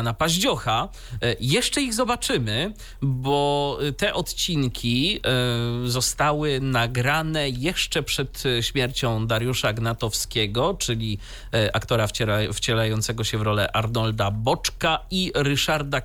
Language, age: Polish, 30-49